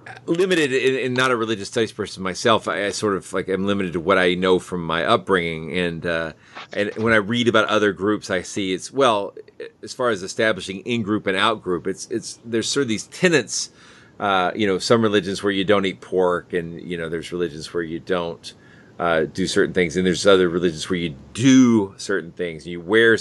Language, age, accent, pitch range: English, 30-49, American, 90-120 Hz